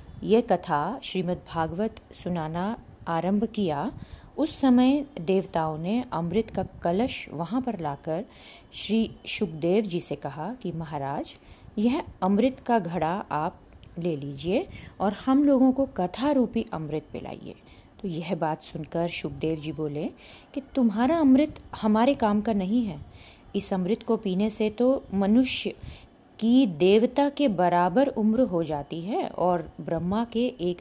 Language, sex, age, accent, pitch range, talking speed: Hindi, female, 30-49, native, 170-230 Hz, 140 wpm